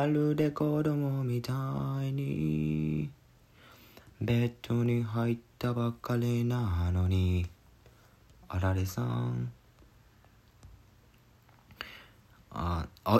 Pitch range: 100-125 Hz